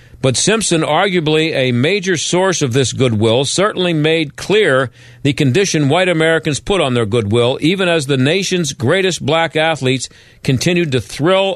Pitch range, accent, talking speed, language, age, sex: 130-200 Hz, American, 155 wpm, English, 50-69, male